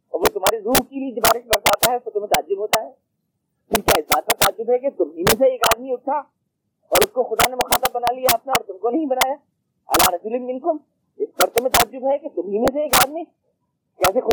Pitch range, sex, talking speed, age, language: 210-335 Hz, male, 60 wpm, 30-49, Urdu